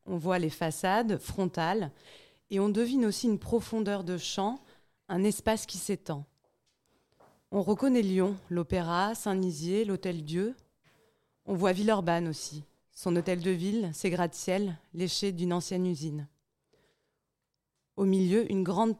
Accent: French